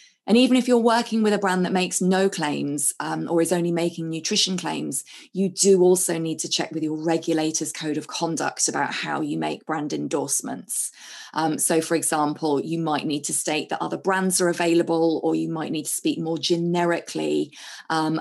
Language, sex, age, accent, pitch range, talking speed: English, female, 20-39, British, 155-185 Hz, 200 wpm